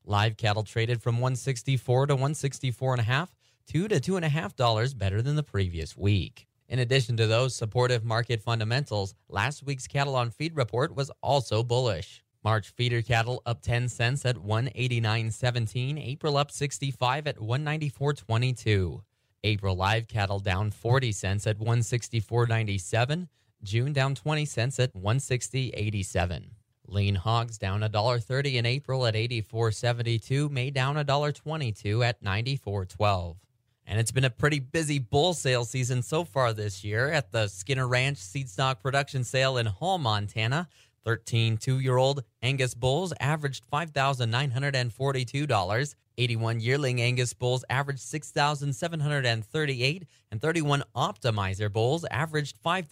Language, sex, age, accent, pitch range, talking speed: English, male, 20-39, American, 110-140 Hz, 130 wpm